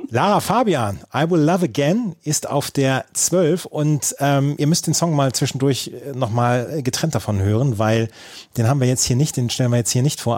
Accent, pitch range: German, 120-145 Hz